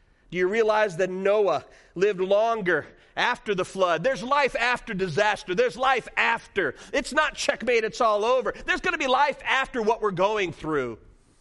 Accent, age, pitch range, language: American, 40-59, 190-280 Hz, English